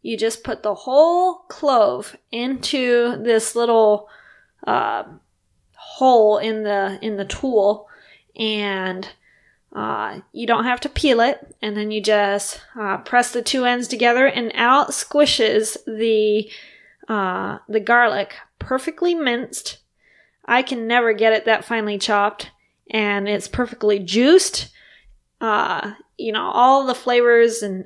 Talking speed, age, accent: 135 wpm, 20-39, American